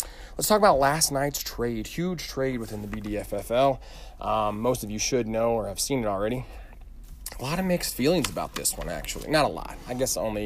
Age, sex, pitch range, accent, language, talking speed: 30-49, male, 90-130 Hz, American, English, 210 wpm